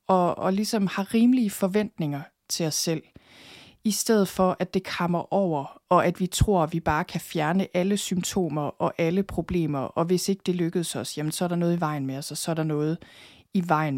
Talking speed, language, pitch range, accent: 225 wpm, Danish, 160-200 Hz, native